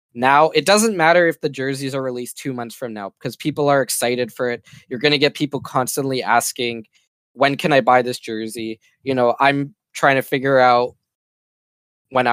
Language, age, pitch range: English, 20-39, 120-145 Hz